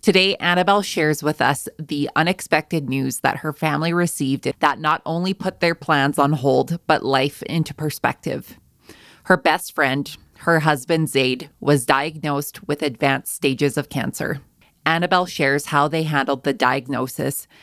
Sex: female